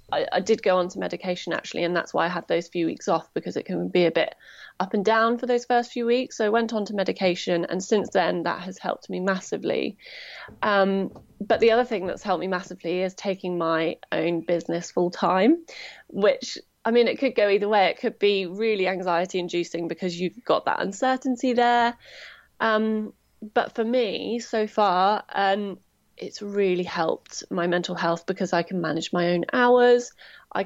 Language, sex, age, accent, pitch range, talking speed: English, female, 20-39, British, 180-225 Hz, 200 wpm